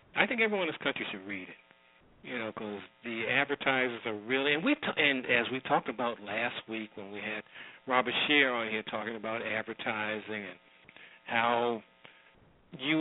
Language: English